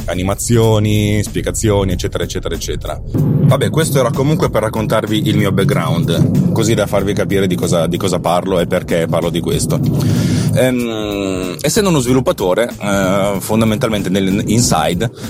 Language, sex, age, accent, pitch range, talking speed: Italian, male, 30-49, native, 95-120 Hz, 130 wpm